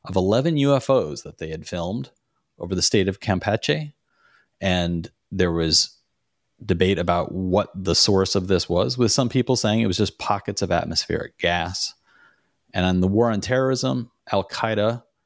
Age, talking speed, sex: 40-59, 165 wpm, male